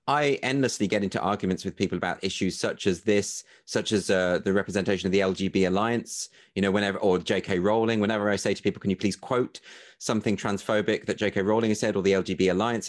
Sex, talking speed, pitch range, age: male, 220 wpm, 100-140 Hz, 30-49